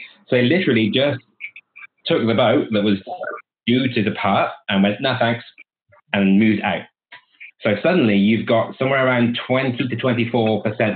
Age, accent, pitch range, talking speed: 30-49, British, 100-115 Hz, 140 wpm